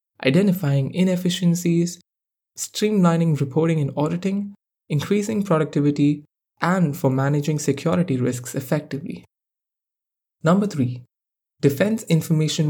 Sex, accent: male, Indian